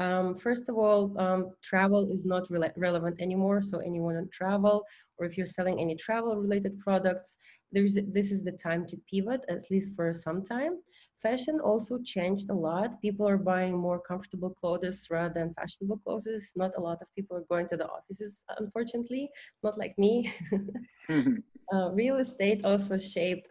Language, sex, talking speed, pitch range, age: English, female, 175 wpm, 175-215 Hz, 20-39